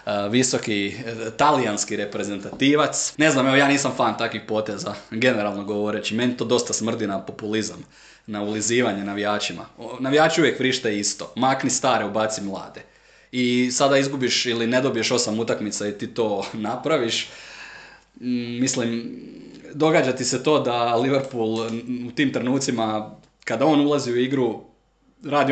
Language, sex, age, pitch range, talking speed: Croatian, male, 20-39, 105-125 Hz, 135 wpm